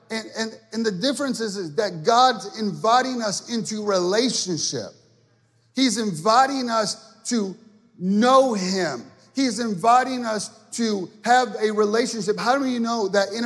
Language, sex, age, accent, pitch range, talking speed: English, male, 30-49, American, 200-255 Hz, 145 wpm